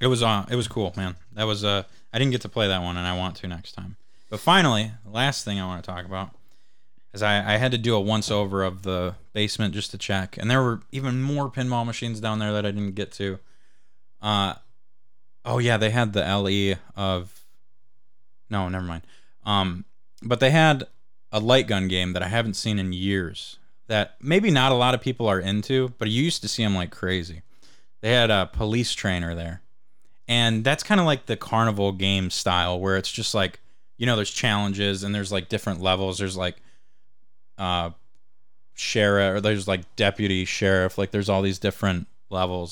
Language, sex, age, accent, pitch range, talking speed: English, male, 20-39, American, 95-120 Hz, 205 wpm